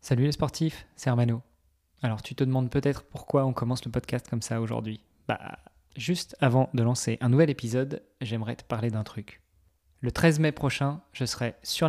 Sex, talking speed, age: male, 190 wpm, 20-39